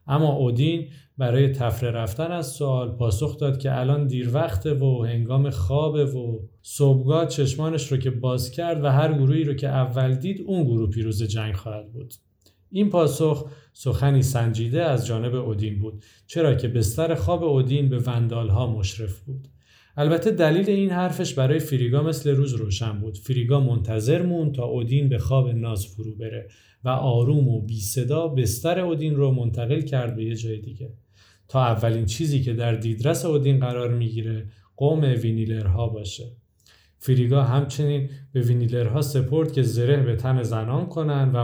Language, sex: Persian, male